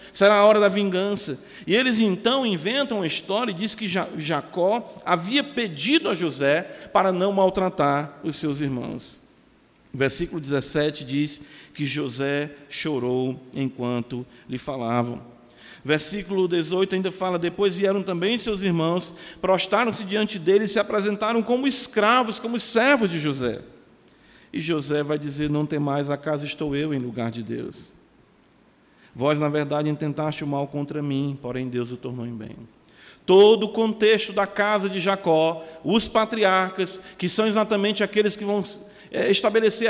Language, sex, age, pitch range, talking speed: Portuguese, male, 50-69, 150-215 Hz, 150 wpm